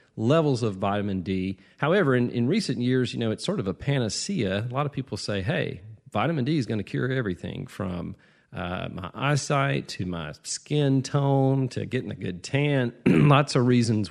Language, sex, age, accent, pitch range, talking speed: English, male, 40-59, American, 95-130 Hz, 190 wpm